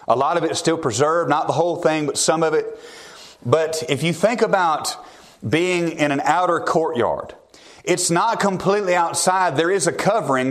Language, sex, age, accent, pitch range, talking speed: English, male, 30-49, American, 155-195 Hz, 190 wpm